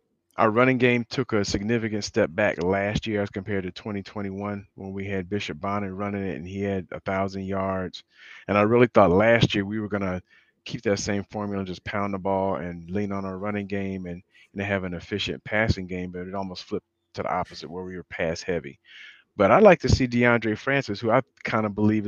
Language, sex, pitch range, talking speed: English, male, 95-110 Hz, 225 wpm